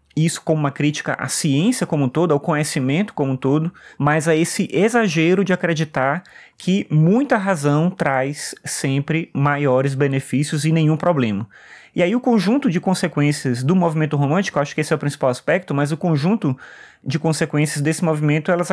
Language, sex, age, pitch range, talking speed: Portuguese, male, 20-39, 145-185 Hz, 175 wpm